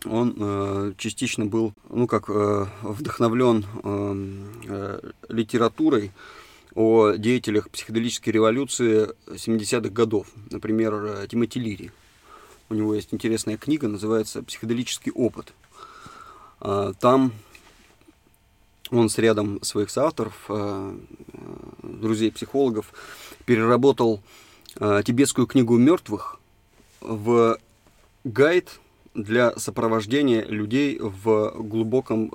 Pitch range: 105-120 Hz